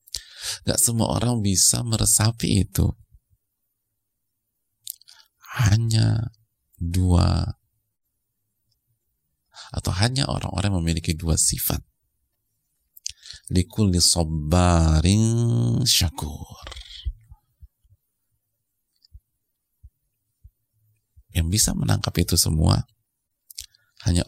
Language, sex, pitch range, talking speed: Indonesian, male, 85-110 Hz, 55 wpm